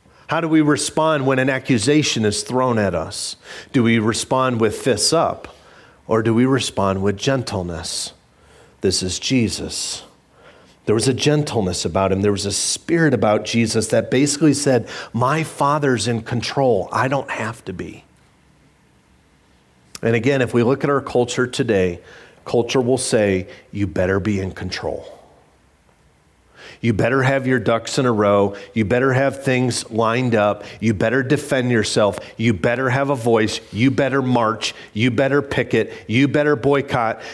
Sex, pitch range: male, 100-135 Hz